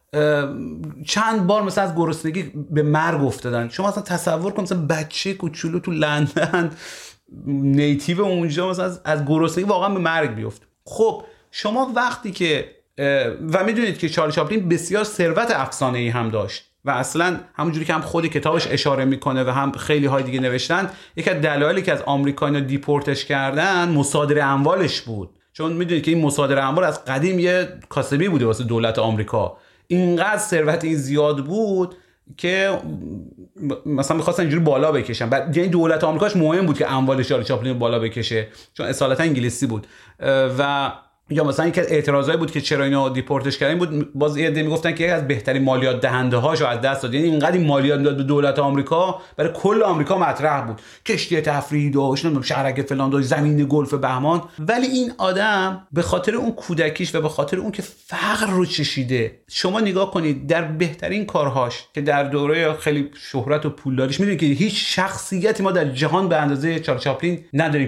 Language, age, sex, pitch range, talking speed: English, 30-49, male, 140-175 Hz, 170 wpm